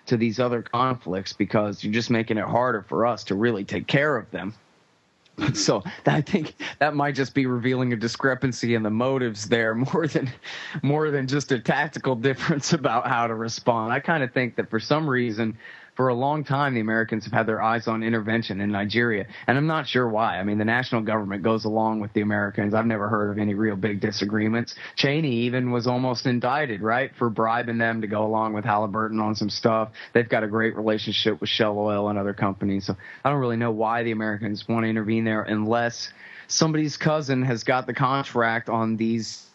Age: 30-49